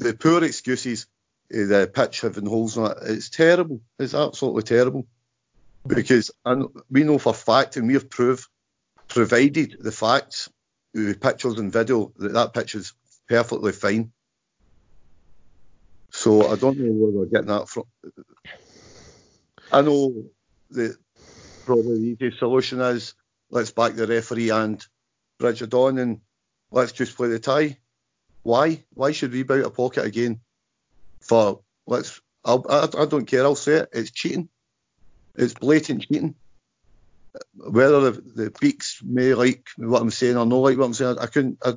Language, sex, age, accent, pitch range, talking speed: English, male, 50-69, British, 110-130 Hz, 155 wpm